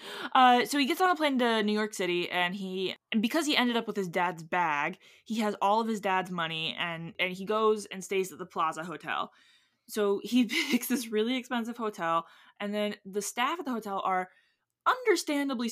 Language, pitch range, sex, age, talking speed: English, 180-230 Hz, female, 20-39, 210 wpm